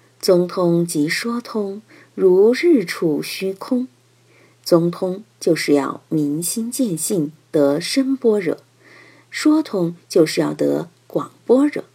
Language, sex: Chinese, female